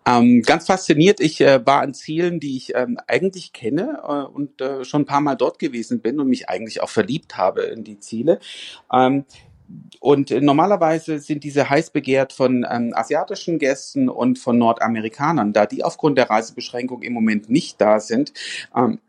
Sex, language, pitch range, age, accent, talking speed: male, German, 125-150 Hz, 40-59, German, 175 wpm